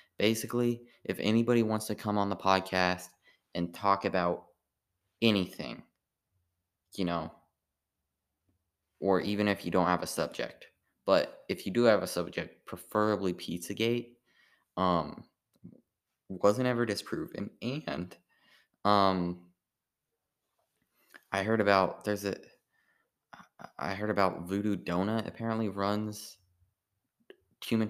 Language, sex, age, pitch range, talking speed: English, male, 20-39, 90-105 Hz, 110 wpm